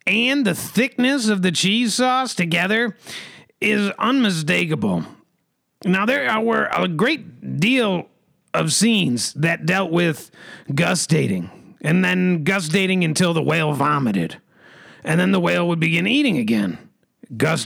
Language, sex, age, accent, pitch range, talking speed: English, male, 40-59, American, 155-220 Hz, 135 wpm